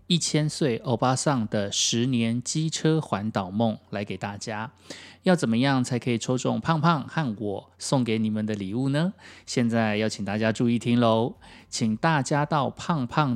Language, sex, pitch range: Chinese, male, 115-150 Hz